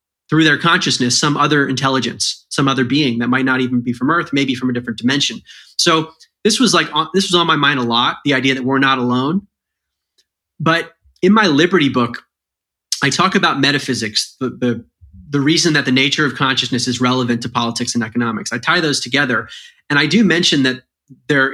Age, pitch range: 30-49, 125-150 Hz